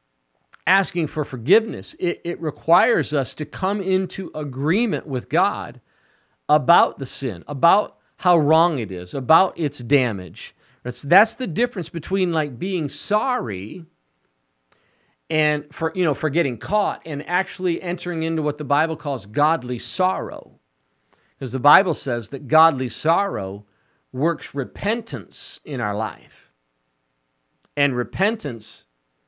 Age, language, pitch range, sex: 50-69, English, 110-165 Hz, male